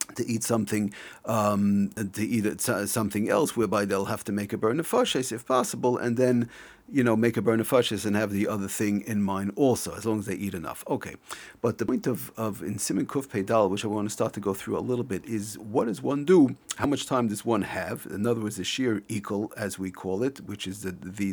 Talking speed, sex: 240 wpm, male